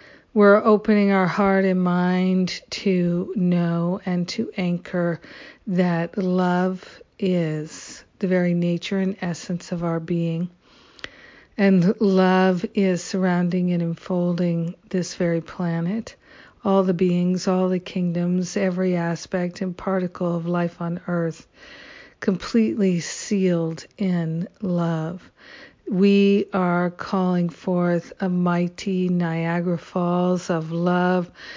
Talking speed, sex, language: 110 wpm, female, English